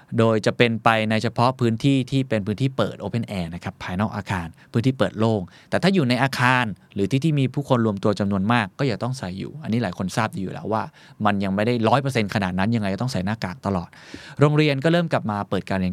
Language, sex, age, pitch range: Thai, male, 20-39, 100-130 Hz